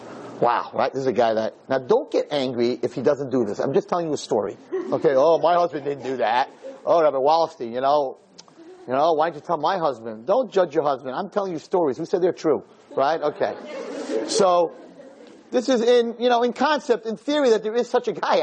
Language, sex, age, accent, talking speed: English, male, 40-59, American, 235 wpm